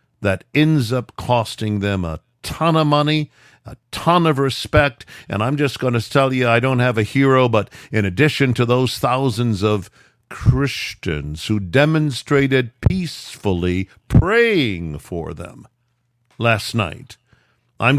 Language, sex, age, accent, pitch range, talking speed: English, male, 50-69, American, 95-130 Hz, 135 wpm